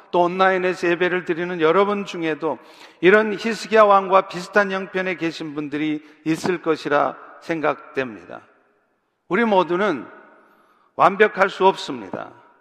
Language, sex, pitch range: Korean, male, 155-205 Hz